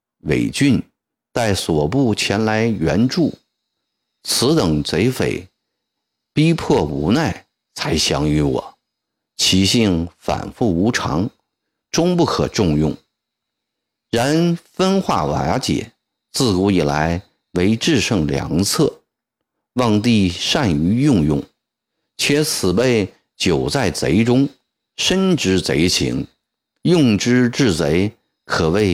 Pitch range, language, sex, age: 85-125 Hz, Chinese, male, 50-69